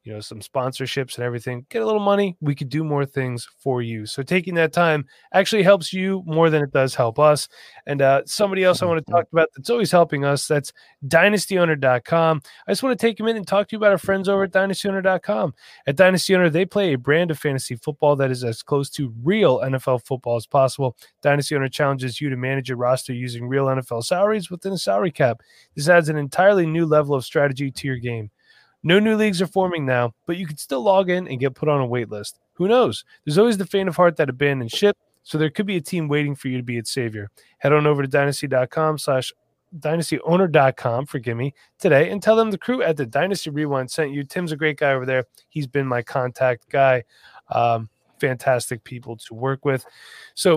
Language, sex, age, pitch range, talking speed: English, male, 20-39, 130-180 Hz, 225 wpm